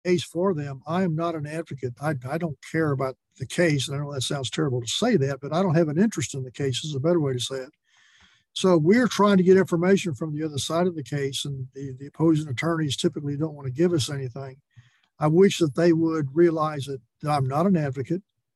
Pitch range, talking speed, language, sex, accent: 140-170 Hz, 250 wpm, English, male, American